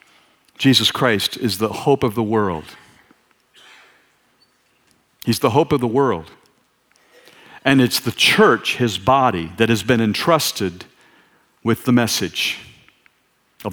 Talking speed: 120 wpm